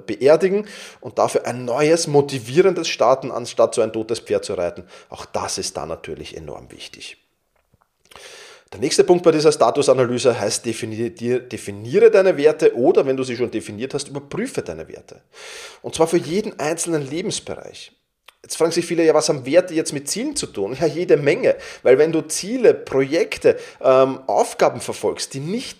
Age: 30-49